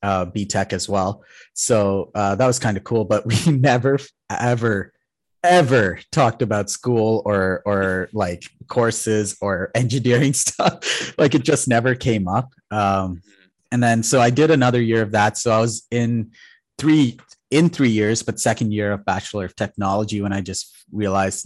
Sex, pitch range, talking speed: male, 95-115 Hz, 170 wpm